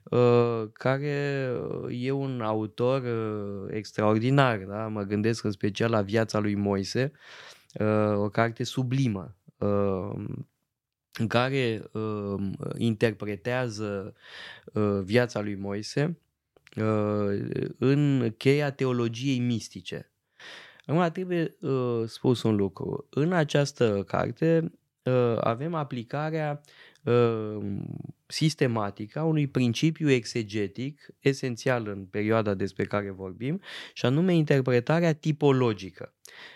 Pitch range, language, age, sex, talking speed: 105-145 Hz, Romanian, 20-39, male, 100 wpm